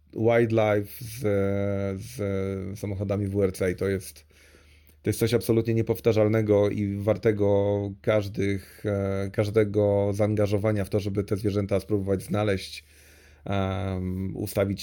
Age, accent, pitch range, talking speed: 30-49, native, 95-110 Hz, 110 wpm